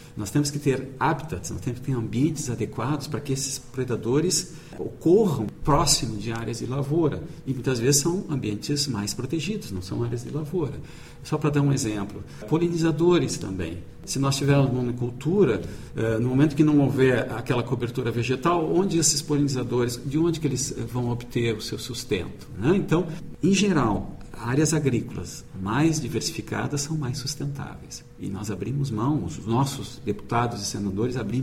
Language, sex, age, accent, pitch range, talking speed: Portuguese, male, 50-69, Brazilian, 115-150 Hz, 160 wpm